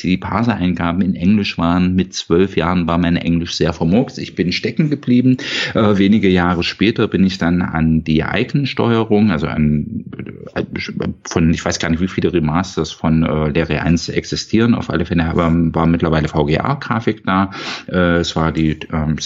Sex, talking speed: male, 175 wpm